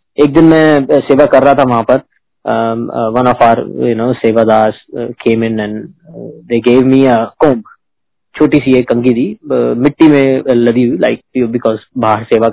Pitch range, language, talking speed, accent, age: 120-165 Hz, Hindi, 65 wpm, native, 20-39